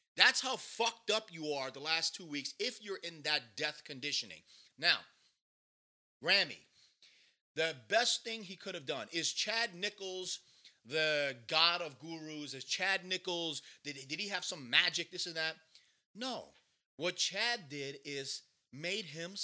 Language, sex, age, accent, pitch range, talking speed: English, male, 30-49, American, 150-220 Hz, 155 wpm